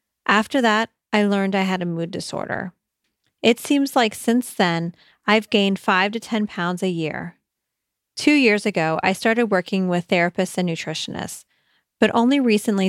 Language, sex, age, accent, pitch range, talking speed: English, female, 30-49, American, 185-220 Hz, 165 wpm